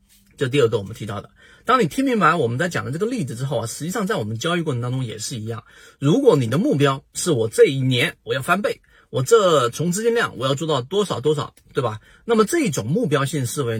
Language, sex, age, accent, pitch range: Chinese, male, 30-49, native, 120-160 Hz